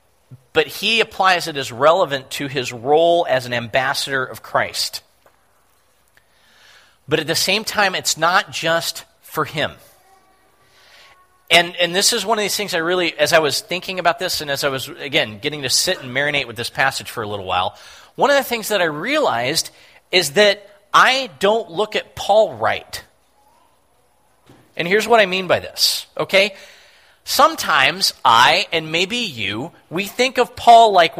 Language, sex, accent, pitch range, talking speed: English, male, American, 155-210 Hz, 175 wpm